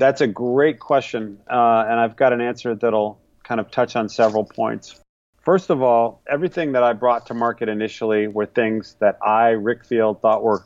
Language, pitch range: English, 115-140 Hz